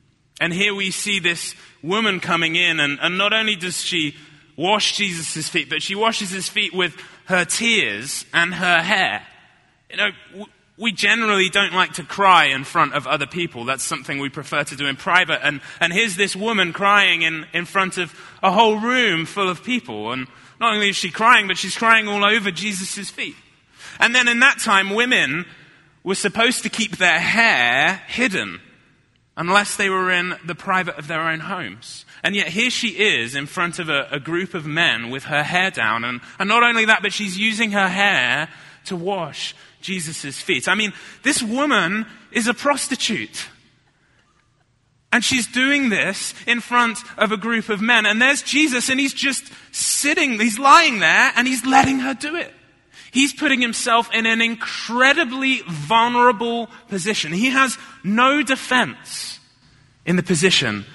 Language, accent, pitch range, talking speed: English, British, 155-230 Hz, 180 wpm